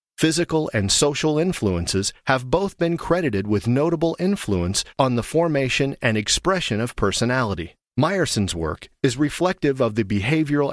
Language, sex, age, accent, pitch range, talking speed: English, male, 40-59, American, 105-150 Hz, 140 wpm